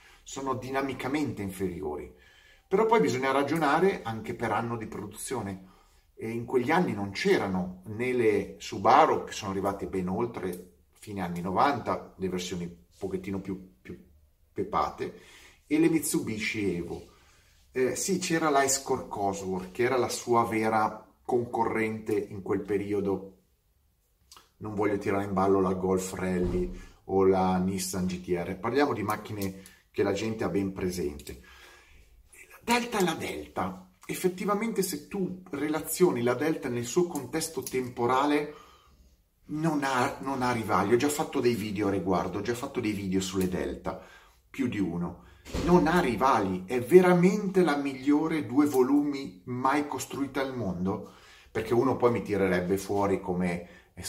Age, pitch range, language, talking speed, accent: 30-49, 95-135 Hz, Italian, 150 wpm, native